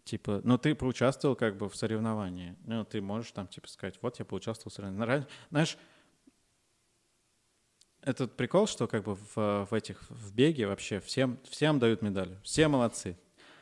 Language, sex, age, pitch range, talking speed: Russian, male, 20-39, 100-125 Hz, 165 wpm